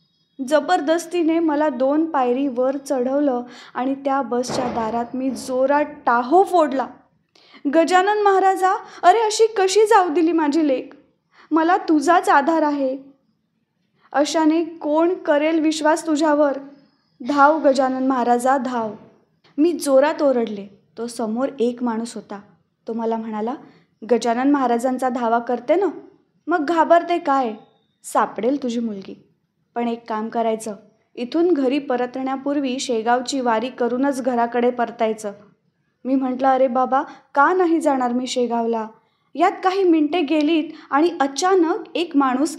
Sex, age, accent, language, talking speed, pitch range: female, 20-39, native, Marathi, 125 wpm, 240-320 Hz